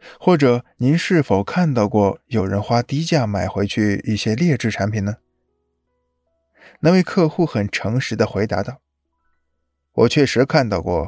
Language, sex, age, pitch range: Chinese, male, 20-39, 95-135 Hz